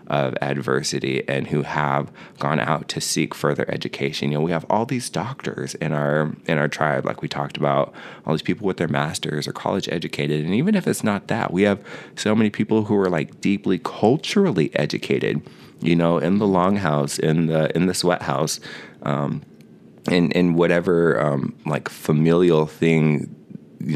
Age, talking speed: 20-39, 185 wpm